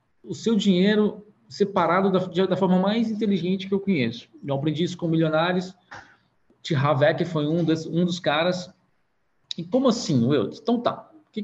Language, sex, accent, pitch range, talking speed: Portuguese, male, Brazilian, 160-210 Hz, 175 wpm